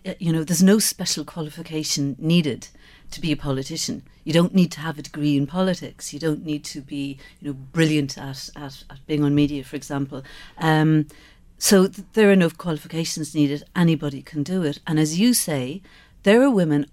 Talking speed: 190 wpm